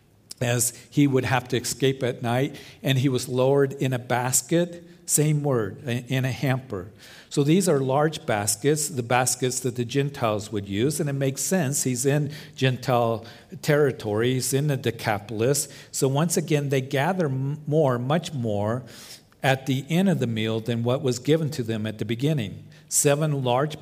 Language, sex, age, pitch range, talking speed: English, male, 50-69, 110-140 Hz, 170 wpm